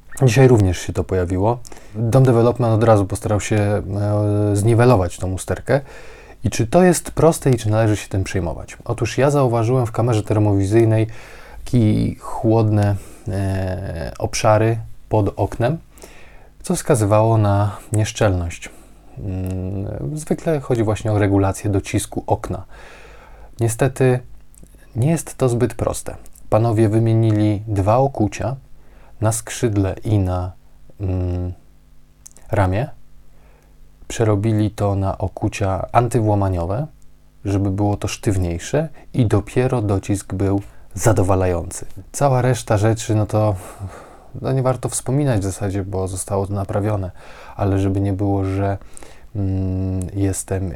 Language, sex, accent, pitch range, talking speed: Polish, male, native, 95-115 Hz, 115 wpm